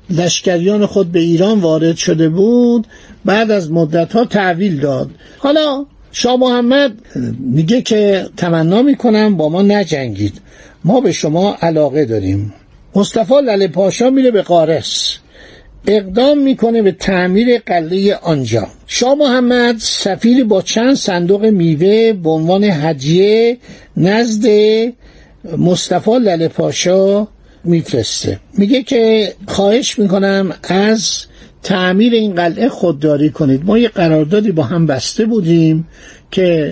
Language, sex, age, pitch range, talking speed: Persian, male, 60-79, 170-220 Hz, 115 wpm